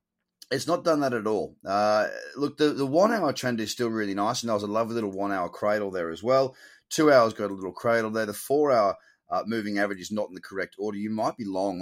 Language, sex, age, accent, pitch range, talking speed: English, male, 30-49, Australian, 95-115 Hz, 250 wpm